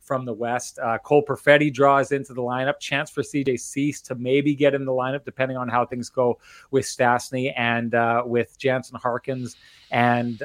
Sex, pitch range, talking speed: male, 120-140 Hz, 190 wpm